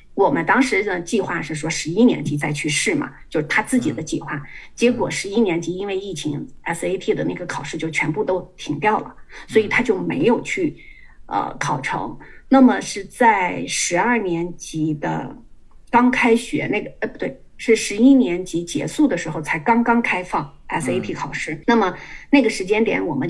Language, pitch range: Chinese, 170-245 Hz